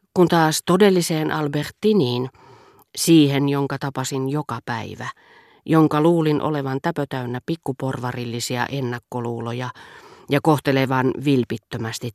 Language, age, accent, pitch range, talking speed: Finnish, 40-59, native, 125-155 Hz, 90 wpm